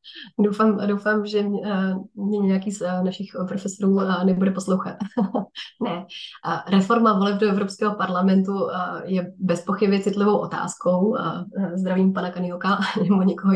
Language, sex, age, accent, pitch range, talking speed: Czech, female, 20-39, native, 180-205 Hz, 115 wpm